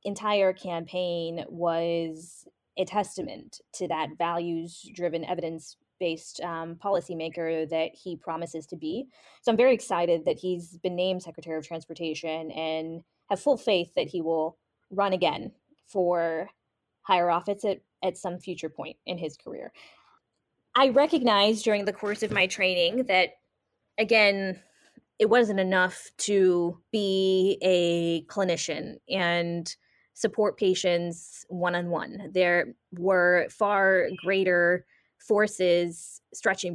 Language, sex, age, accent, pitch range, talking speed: English, female, 20-39, American, 170-200 Hz, 120 wpm